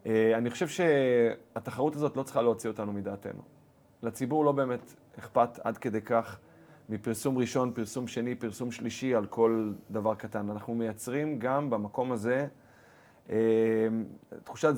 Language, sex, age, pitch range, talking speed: Hebrew, male, 30-49, 110-130 Hz, 140 wpm